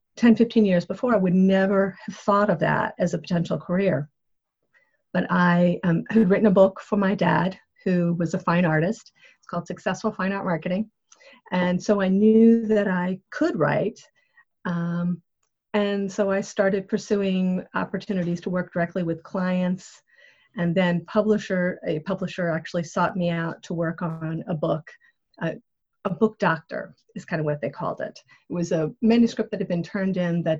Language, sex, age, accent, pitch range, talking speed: English, female, 40-59, American, 170-210 Hz, 175 wpm